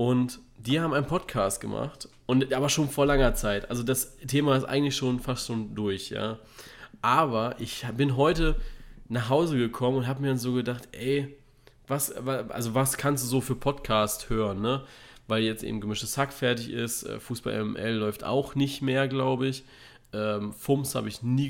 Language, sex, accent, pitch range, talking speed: German, male, German, 115-135 Hz, 180 wpm